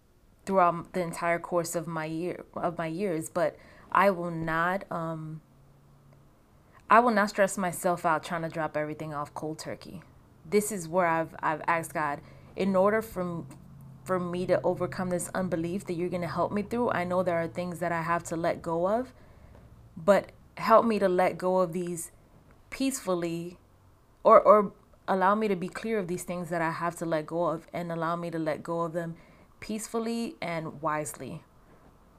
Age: 20-39